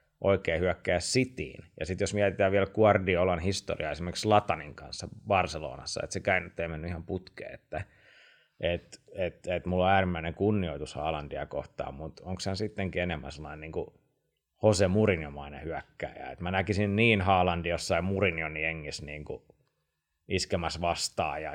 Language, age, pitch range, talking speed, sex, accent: Finnish, 30-49, 85-105 Hz, 155 wpm, male, native